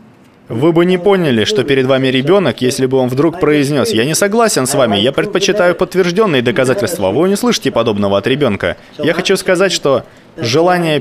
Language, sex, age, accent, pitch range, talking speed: Russian, male, 20-39, native, 125-165 Hz, 180 wpm